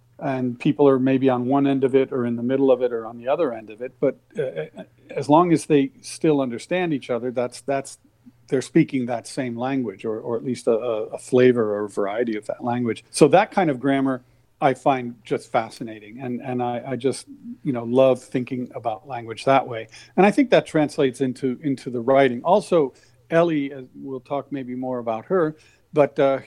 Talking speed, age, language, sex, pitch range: 210 wpm, 50-69, English, male, 120-140 Hz